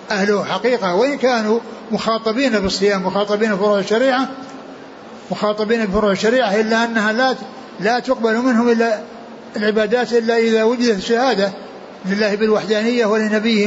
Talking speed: 120 wpm